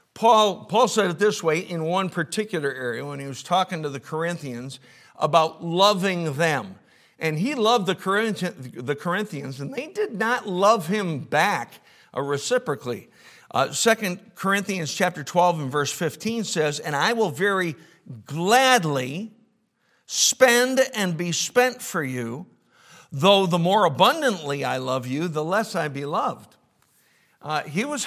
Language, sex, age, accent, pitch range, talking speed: English, male, 60-79, American, 150-215 Hz, 145 wpm